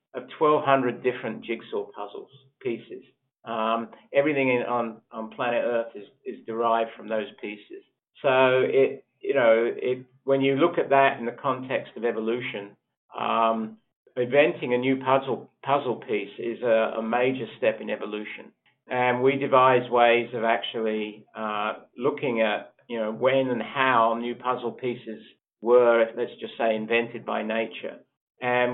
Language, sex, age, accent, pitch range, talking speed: English, male, 50-69, Australian, 115-130 Hz, 150 wpm